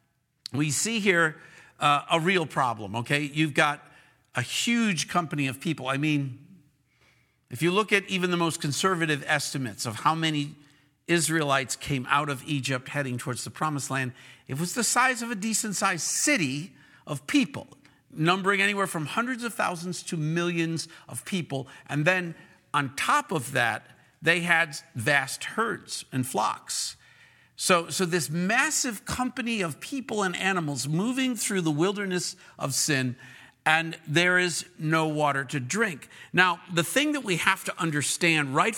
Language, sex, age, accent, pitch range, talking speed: English, male, 50-69, American, 145-195 Hz, 160 wpm